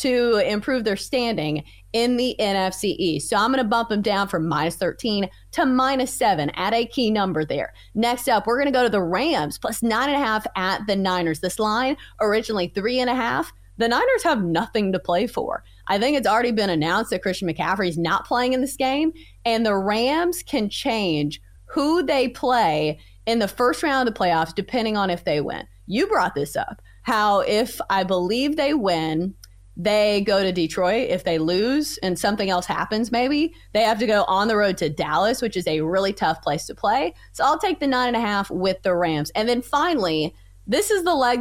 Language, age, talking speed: English, 30-49, 215 wpm